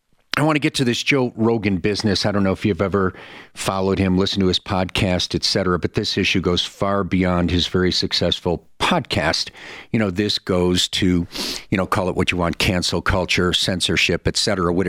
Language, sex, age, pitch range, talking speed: English, male, 50-69, 90-105 Hz, 205 wpm